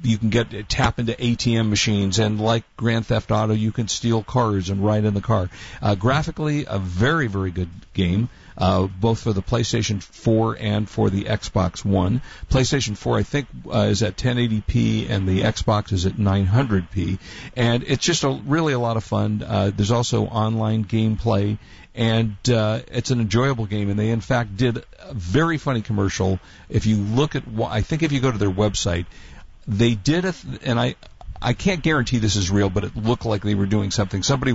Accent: American